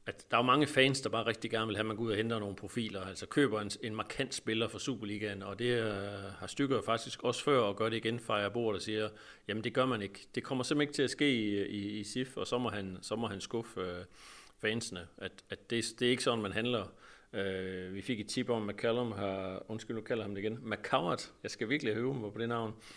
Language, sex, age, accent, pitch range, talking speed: Danish, male, 40-59, native, 100-120 Hz, 265 wpm